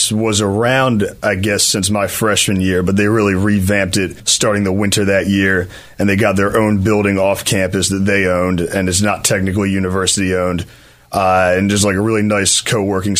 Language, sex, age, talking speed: English, male, 30-49, 190 wpm